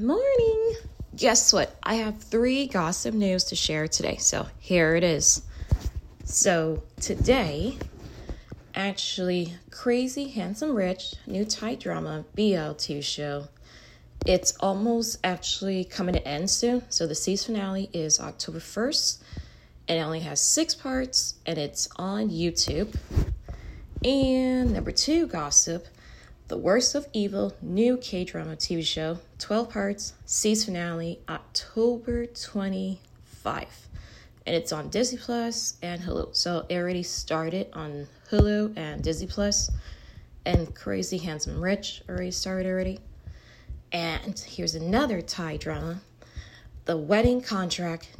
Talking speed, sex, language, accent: 125 wpm, female, English, American